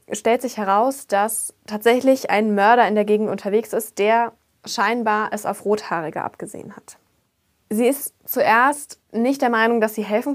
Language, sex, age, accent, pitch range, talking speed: German, female, 20-39, German, 200-240 Hz, 160 wpm